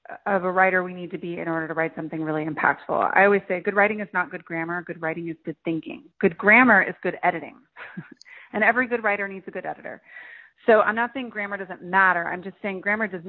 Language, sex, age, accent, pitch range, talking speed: English, female, 30-49, American, 175-210 Hz, 240 wpm